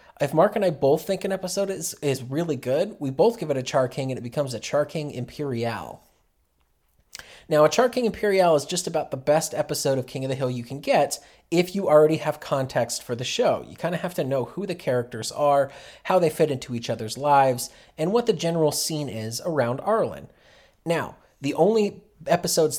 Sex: male